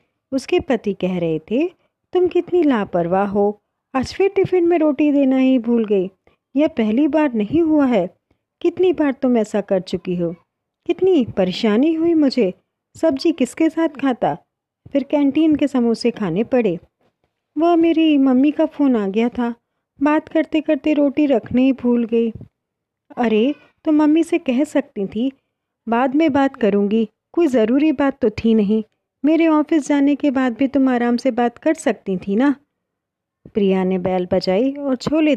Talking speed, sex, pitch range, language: 165 wpm, female, 210-300 Hz, Hindi